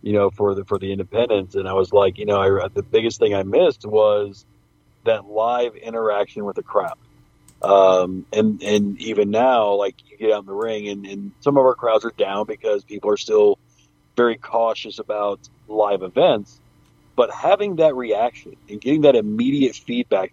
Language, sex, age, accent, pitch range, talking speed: English, male, 40-59, American, 100-130 Hz, 190 wpm